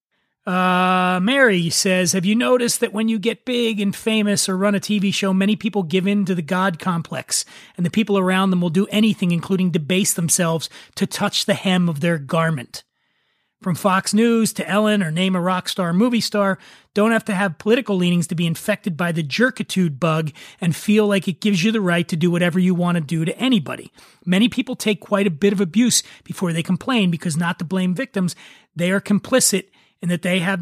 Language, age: English, 30-49